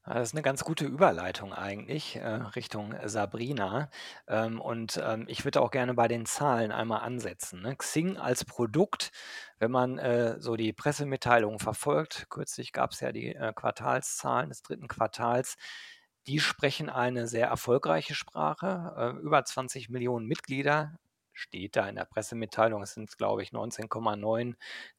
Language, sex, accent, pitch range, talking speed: German, male, German, 115-140 Hz, 135 wpm